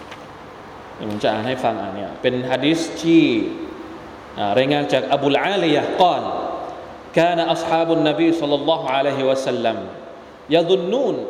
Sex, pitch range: male, 135-175 Hz